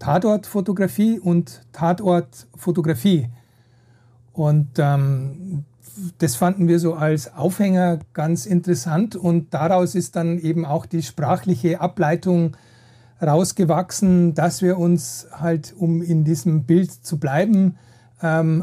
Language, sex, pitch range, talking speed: German, male, 145-180 Hz, 110 wpm